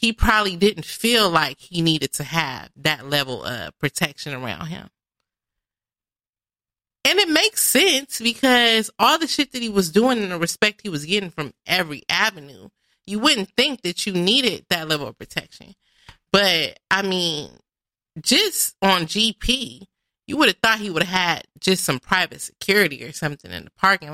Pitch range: 155-240 Hz